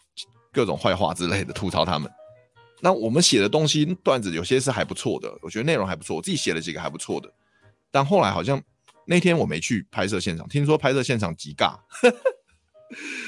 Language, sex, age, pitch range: Chinese, male, 30-49, 95-150 Hz